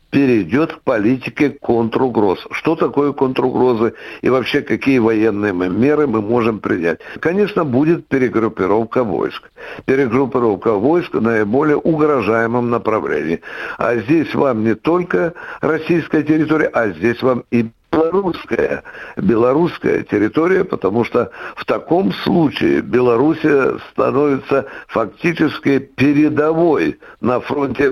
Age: 60-79